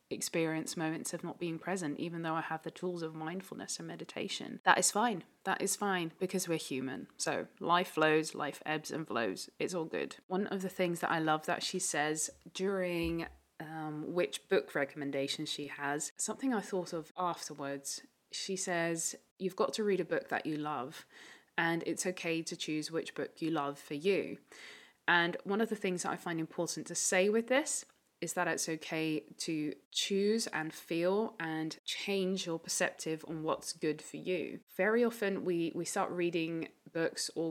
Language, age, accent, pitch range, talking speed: English, 20-39, British, 155-185 Hz, 185 wpm